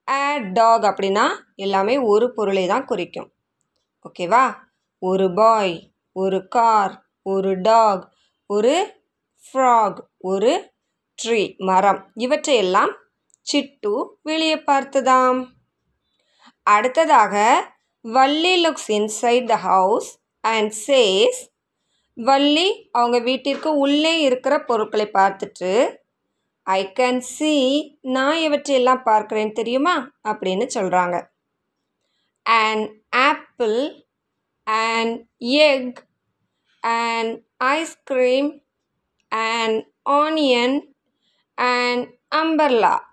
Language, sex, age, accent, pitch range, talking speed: Tamil, female, 20-39, native, 215-285 Hz, 80 wpm